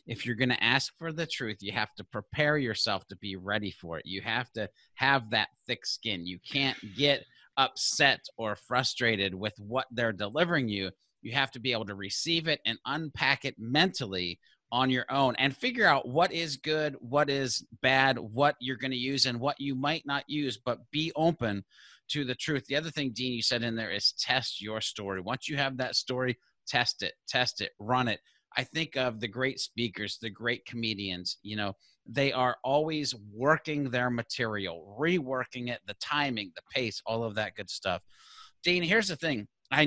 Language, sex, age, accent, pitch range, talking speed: English, male, 30-49, American, 110-140 Hz, 200 wpm